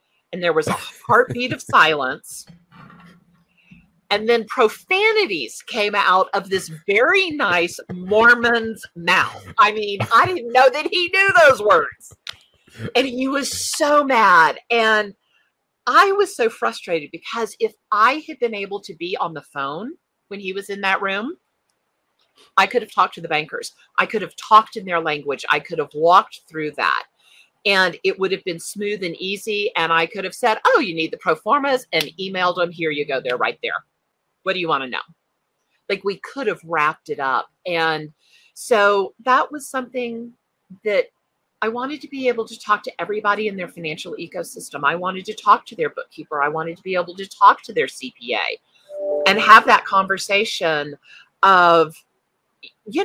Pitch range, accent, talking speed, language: 180-265 Hz, American, 180 wpm, English